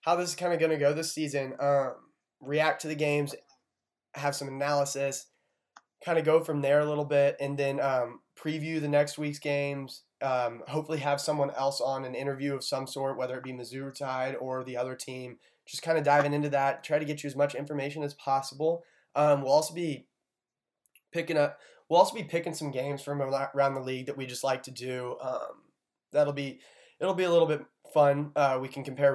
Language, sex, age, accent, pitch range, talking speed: English, male, 20-39, American, 135-155 Hz, 215 wpm